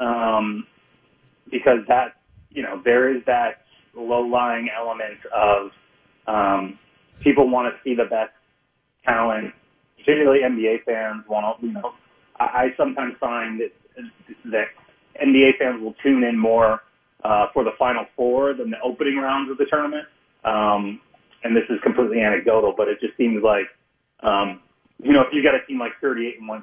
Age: 30-49